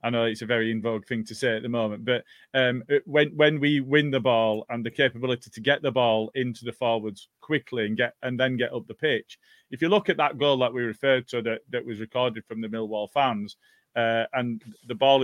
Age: 30-49